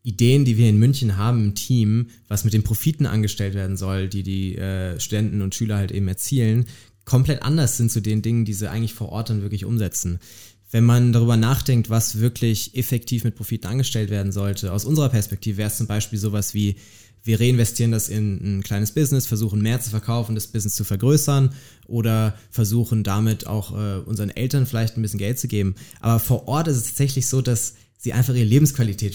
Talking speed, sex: 205 wpm, male